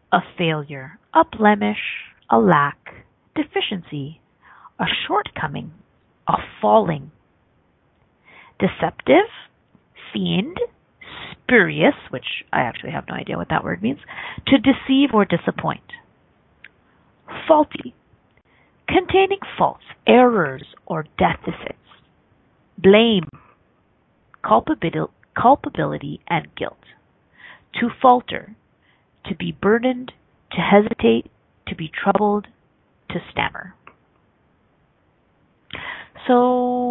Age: 40-59